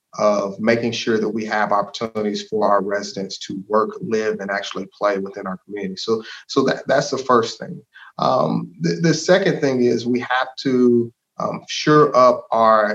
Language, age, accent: English, 30-49, American